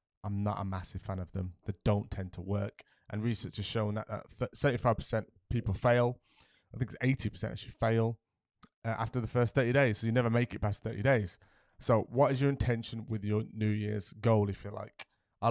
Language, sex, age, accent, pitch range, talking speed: English, male, 20-39, British, 105-130 Hz, 220 wpm